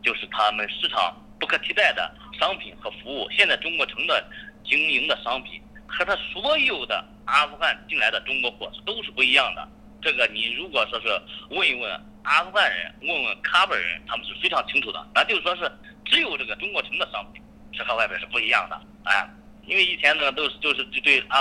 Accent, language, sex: native, Chinese, male